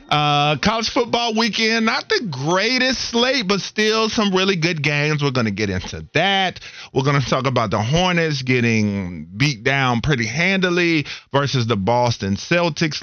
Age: 40-59